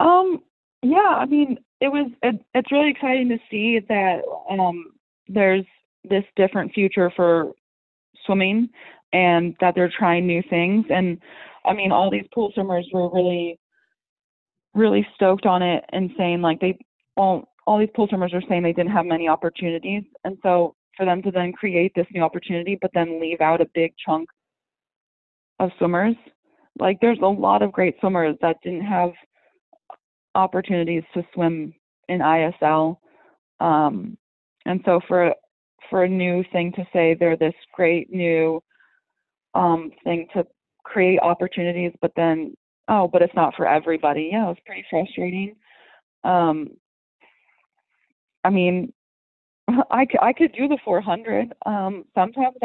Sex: female